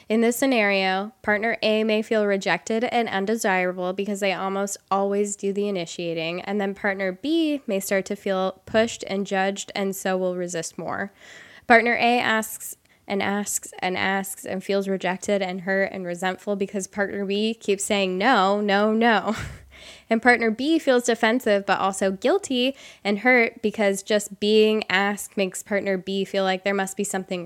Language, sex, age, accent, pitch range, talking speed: English, female, 10-29, American, 195-225 Hz, 170 wpm